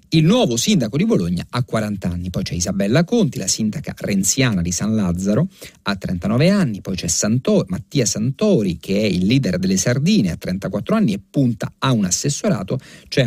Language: Italian